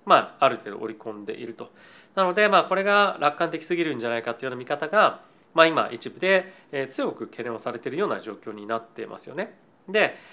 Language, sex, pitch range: Japanese, male, 115-165 Hz